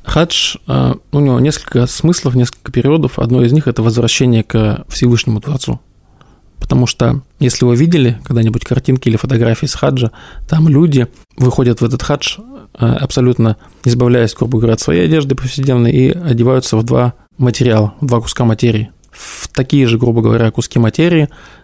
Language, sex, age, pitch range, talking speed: Russian, male, 20-39, 120-135 Hz, 160 wpm